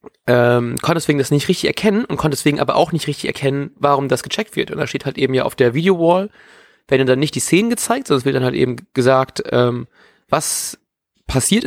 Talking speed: 225 wpm